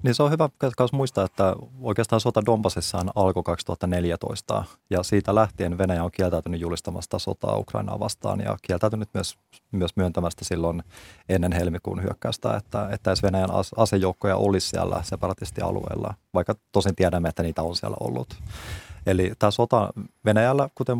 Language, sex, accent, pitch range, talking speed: Finnish, male, native, 90-105 Hz, 145 wpm